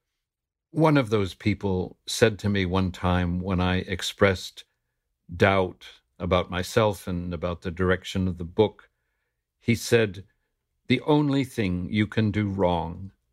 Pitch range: 90-110 Hz